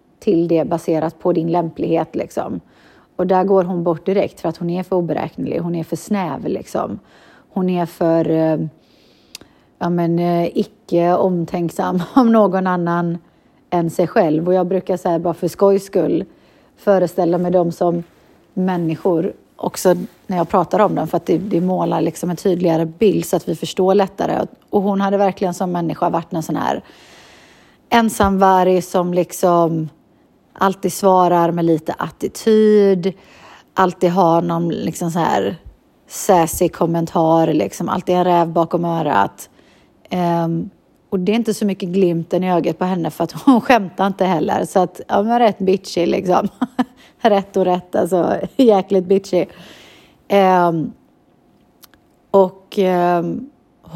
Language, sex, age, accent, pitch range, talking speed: Swedish, female, 30-49, native, 170-195 Hz, 150 wpm